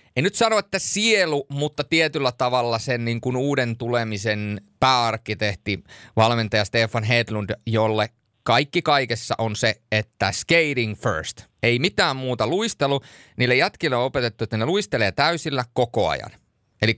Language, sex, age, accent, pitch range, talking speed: Finnish, male, 30-49, native, 110-135 Hz, 140 wpm